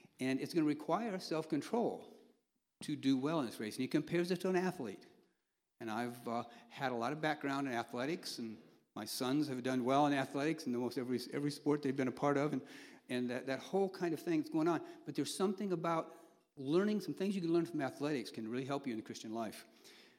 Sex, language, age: male, English, 60-79